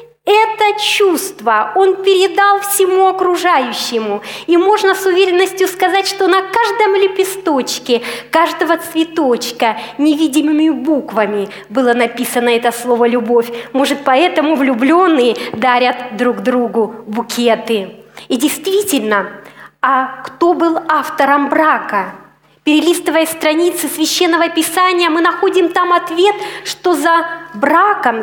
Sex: female